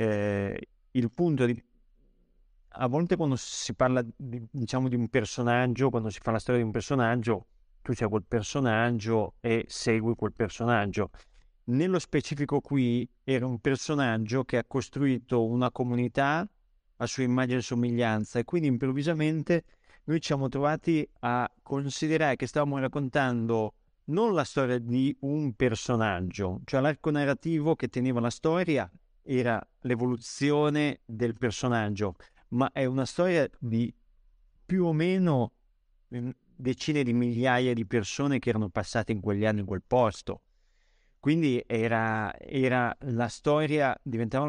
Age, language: 30-49, Italian